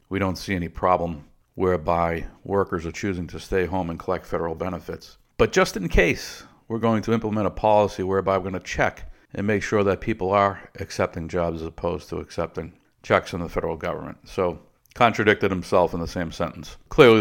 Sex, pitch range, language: male, 90-100 Hz, English